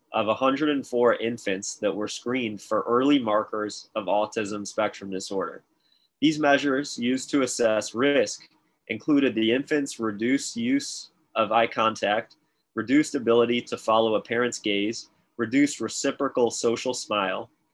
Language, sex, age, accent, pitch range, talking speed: English, male, 20-39, American, 105-130 Hz, 130 wpm